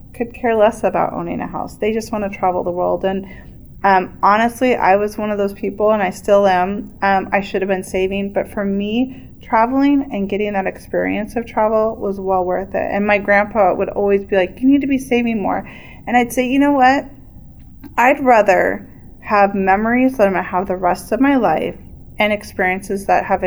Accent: American